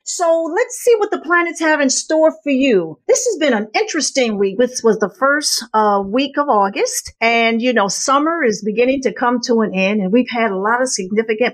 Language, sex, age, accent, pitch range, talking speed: English, female, 50-69, American, 220-310 Hz, 225 wpm